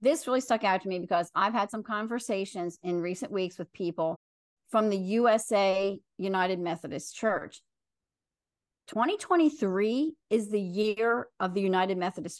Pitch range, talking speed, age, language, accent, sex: 195-255 Hz, 145 wpm, 40-59, English, American, female